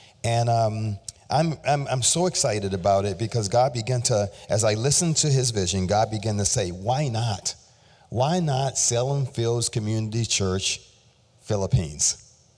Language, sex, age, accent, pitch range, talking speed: English, male, 40-59, American, 100-130 Hz, 155 wpm